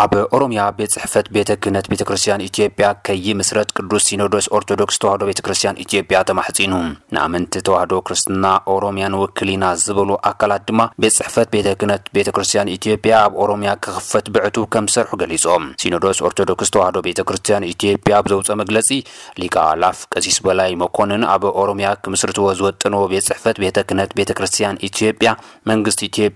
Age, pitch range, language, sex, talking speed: 30-49, 100-105 Hz, Amharic, male, 100 wpm